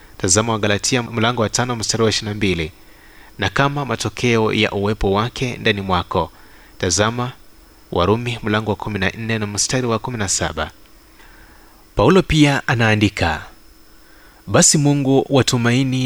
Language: Swahili